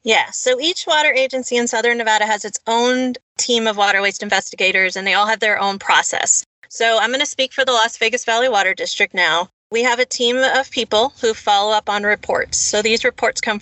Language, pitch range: English, 210-260 Hz